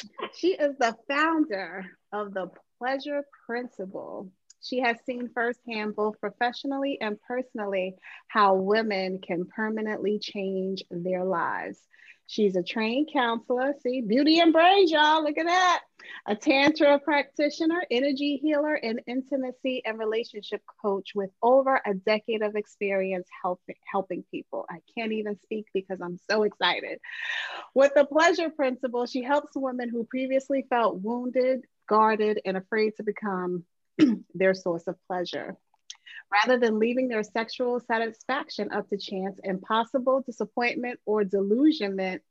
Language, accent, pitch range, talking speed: English, American, 190-265 Hz, 135 wpm